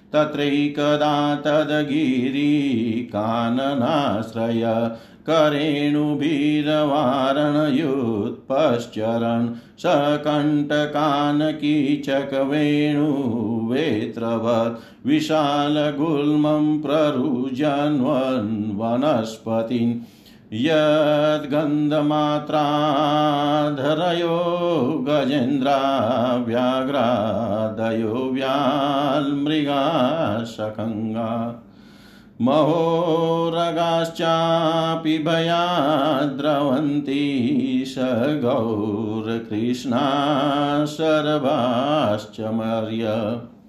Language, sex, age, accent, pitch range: Hindi, male, 50-69, native, 115-150 Hz